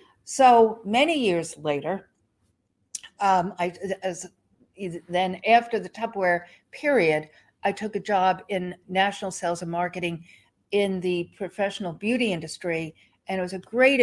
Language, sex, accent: English, female, American